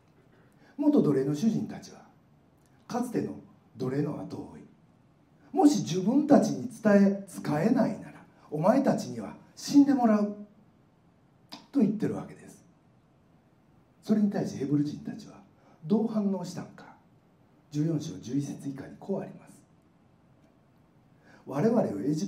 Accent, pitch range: native, 185-230 Hz